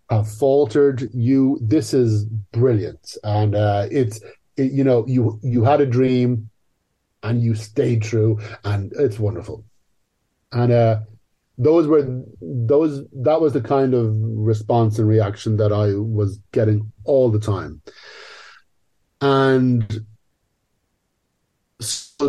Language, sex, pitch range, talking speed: English, male, 110-135 Hz, 125 wpm